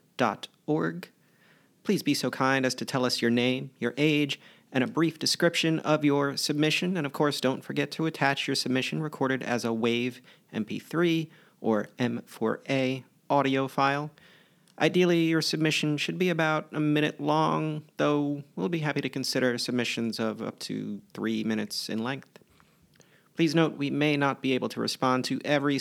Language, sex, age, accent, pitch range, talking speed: English, male, 40-59, American, 130-155 Hz, 165 wpm